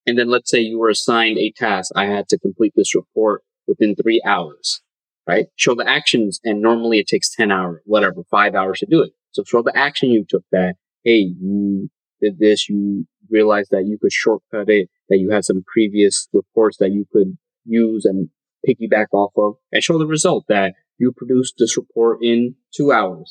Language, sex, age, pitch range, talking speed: English, male, 20-39, 110-160 Hz, 200 wpm